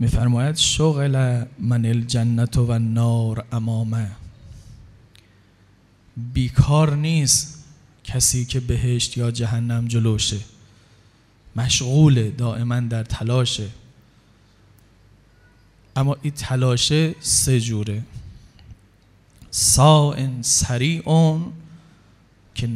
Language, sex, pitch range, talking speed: Persian, male, 110-135 Hz, 75 wpm